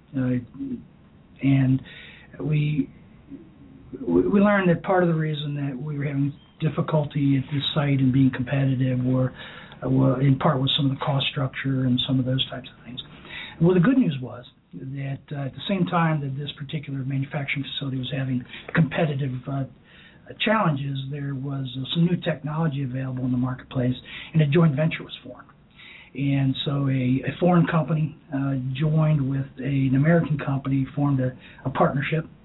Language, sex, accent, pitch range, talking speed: English, male, American, 135-160 Hz, 170 wpm